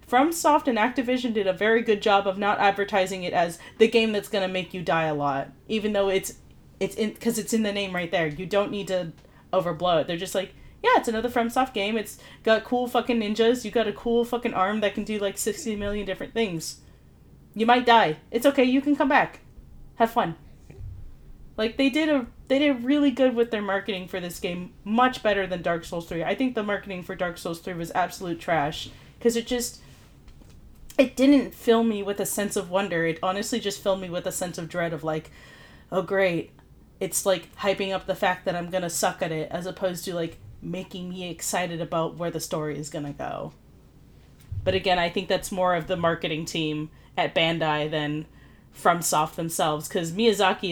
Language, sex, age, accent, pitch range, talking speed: English, female, 30-49, American, 170-220 Hz, 215 wpm